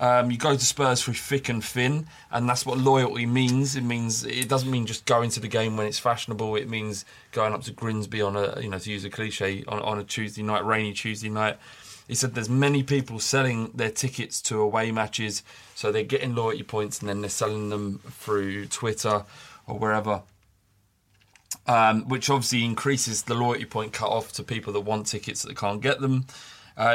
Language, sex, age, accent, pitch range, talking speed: English, male, 20-39, British, 105-125 Hz, 205 wpm